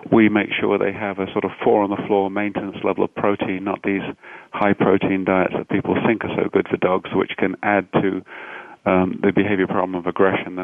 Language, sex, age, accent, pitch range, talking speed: English, male, 40-59, British, 95-110 Hz, 205 wpm